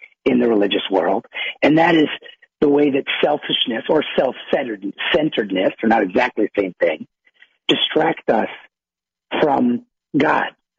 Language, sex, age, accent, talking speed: English, male, 50-69, American, 130 wpm